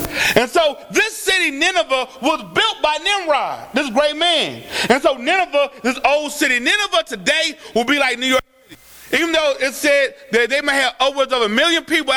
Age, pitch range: 30-49, 260-340 Hz